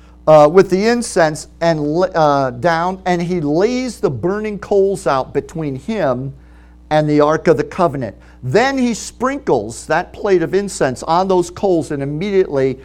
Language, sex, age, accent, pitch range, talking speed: English, male, 50-69, American, 140-210 Hz, 160 wpm